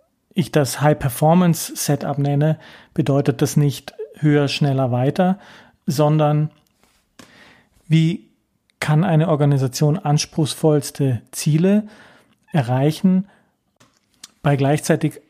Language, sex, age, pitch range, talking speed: German, male, 40-59, 145-170 Hz, 80 wpm